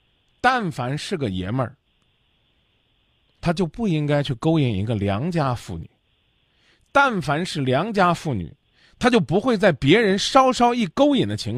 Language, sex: Chinese, male